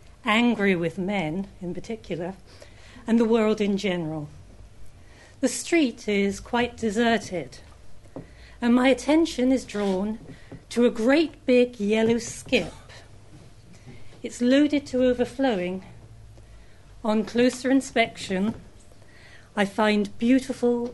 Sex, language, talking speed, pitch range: female, English, 105 wpm, 155-245 Hz